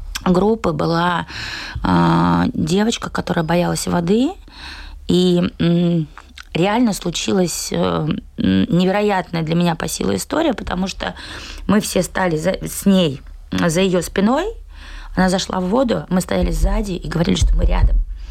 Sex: female